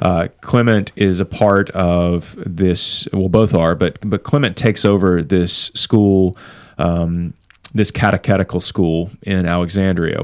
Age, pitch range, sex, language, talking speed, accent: 30-49, 90-110 Hz, male, English, 135 wpm, American